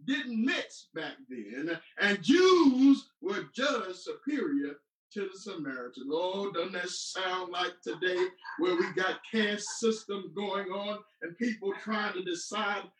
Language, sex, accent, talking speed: English, male, American, 140 wpm